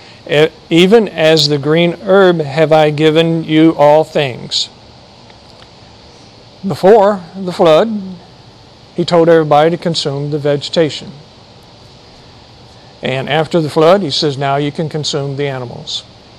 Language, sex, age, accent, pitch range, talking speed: English, male, 50-69, American, 145-180 Hz, 120 wpm